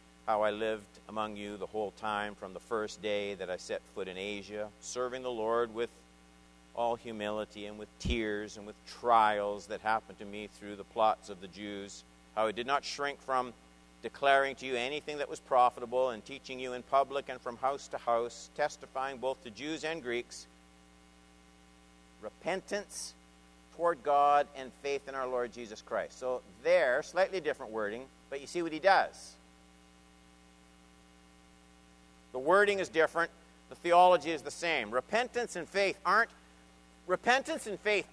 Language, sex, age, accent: English, male, 50-69, American